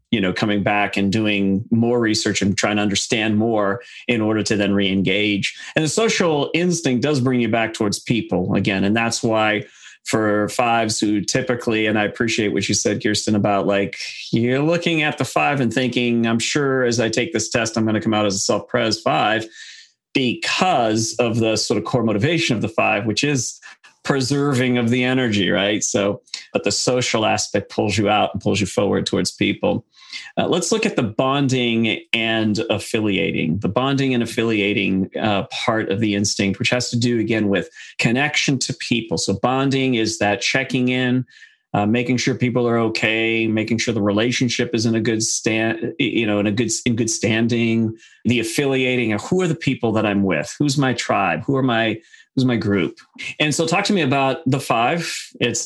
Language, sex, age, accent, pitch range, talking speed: English, male, 40-59, American, 105-125 Hz, 195 wpm